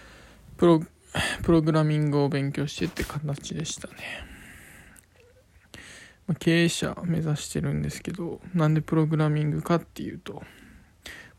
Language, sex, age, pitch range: Japanese, male, 20-39, 145-170 Hz